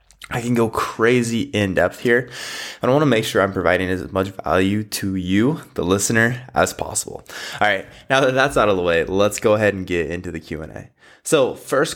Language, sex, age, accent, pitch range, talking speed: English, male, 20-39, American, 90-120 Hz, 225 wpm